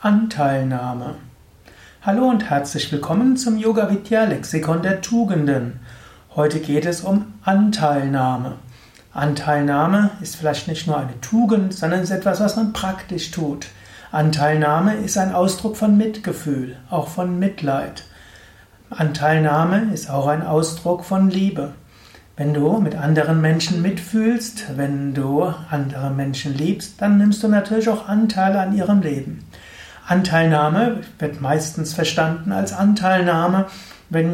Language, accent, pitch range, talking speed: German, German, 145-195 Hz, 125 wpm